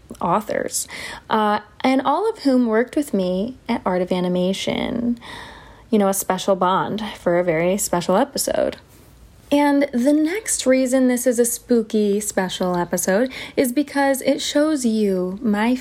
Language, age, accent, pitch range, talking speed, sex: English, 20-39, American, 200-275 Hz, 150 wpm, female